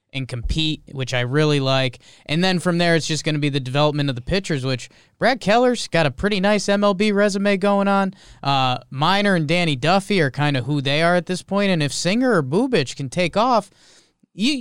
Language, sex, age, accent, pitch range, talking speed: English, male, 20-39, American, 140-190 Hz, 220 wpm